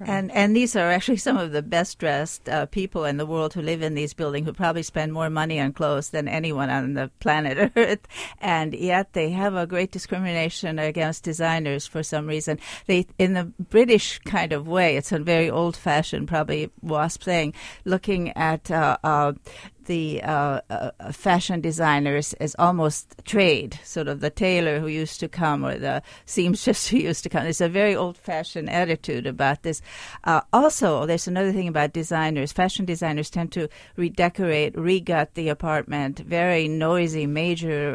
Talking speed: 180 wpm